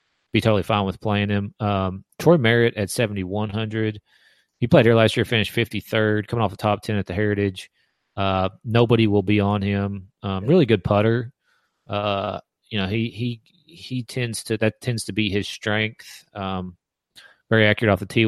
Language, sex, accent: English, male, American